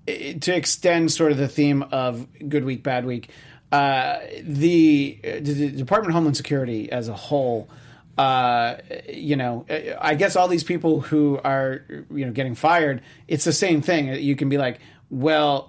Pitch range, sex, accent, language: 120-150 Hz, male, American, English